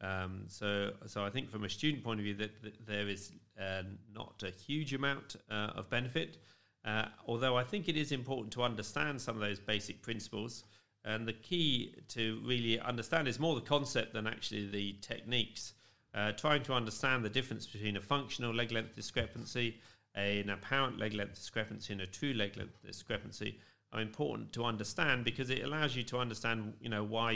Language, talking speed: English, 195 wpm